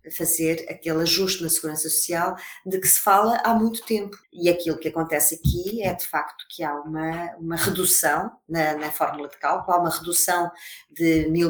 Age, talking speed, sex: 20-39, 190 wpm, female